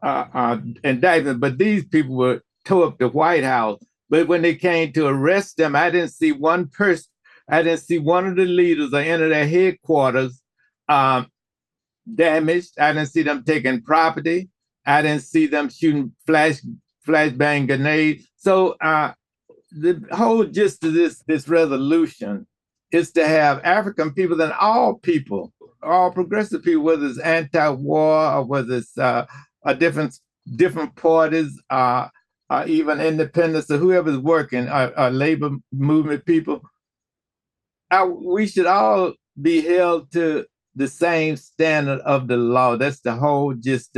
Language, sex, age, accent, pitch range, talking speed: English, male, 60-79, American, 140-170 Hz, 155 wpm